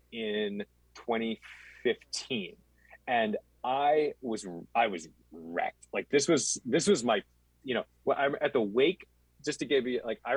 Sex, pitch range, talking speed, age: male, 85-130 Hz, 150 wpm, 30-49